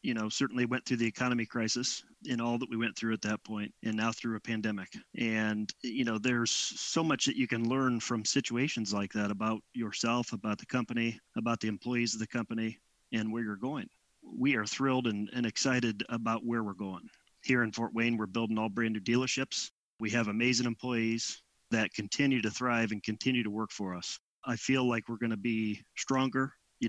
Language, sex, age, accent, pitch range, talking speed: English, male, 30-49, American, 110-125 Hz, 210 wpm